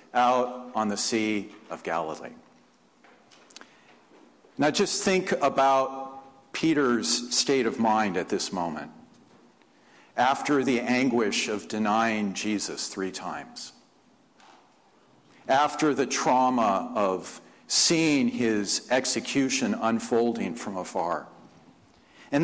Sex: male